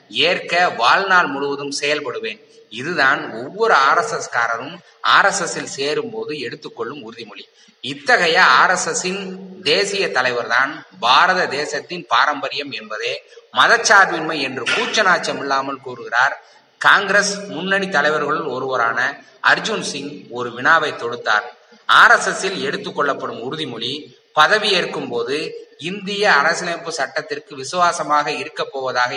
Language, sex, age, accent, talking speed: Tamil, male, 30-49, native, 95 wpm